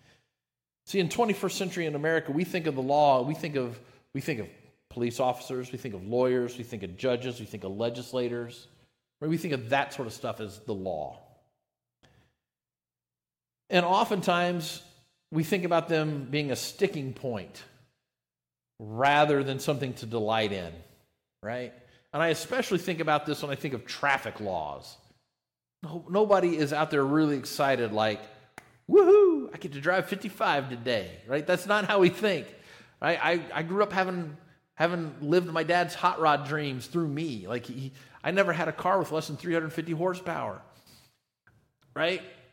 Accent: American